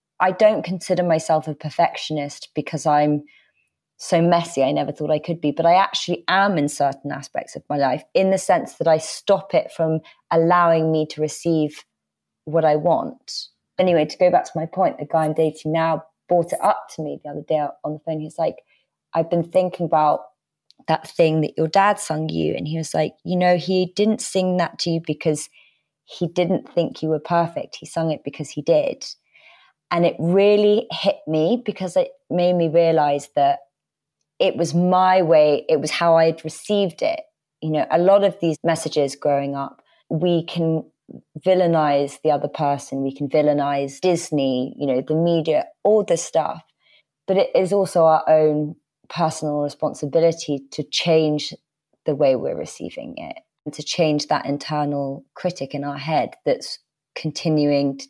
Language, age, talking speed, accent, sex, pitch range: English, 30-49, 180 wpm, British, female, 150-175 Hz